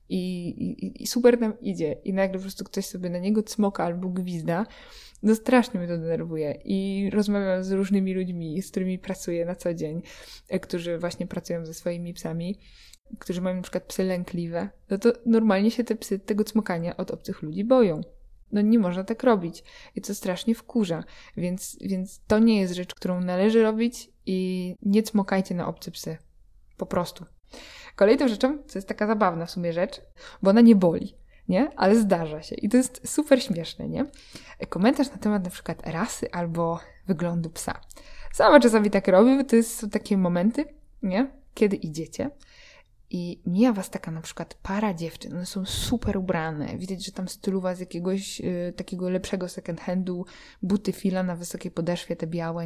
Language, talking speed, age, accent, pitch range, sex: Polish, 180 wpm, 20-39, native, 175-220 Hz, female